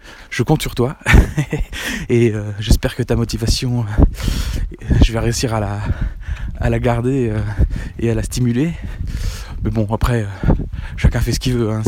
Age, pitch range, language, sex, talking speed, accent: 20-39, 105-120 Hz, French, male, 155 wpm, French